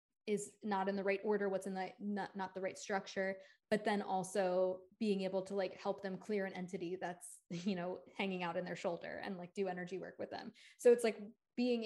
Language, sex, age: English, female, 20-39